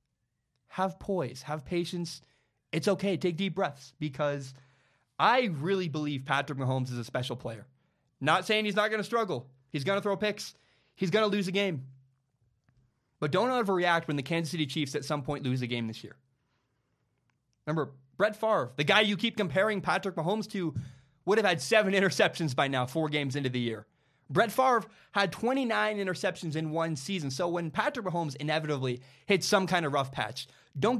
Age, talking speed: 20-39, 185 wpm